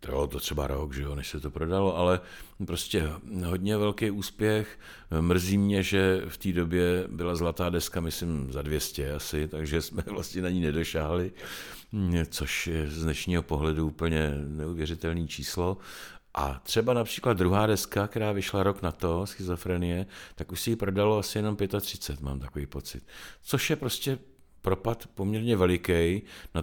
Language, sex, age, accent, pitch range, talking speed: Czech, male, 50-69, native, 80-100 Hz, 160 wpm